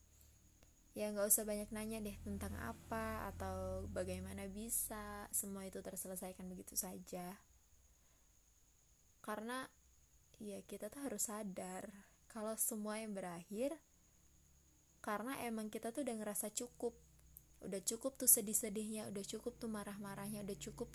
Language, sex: Indonesian, female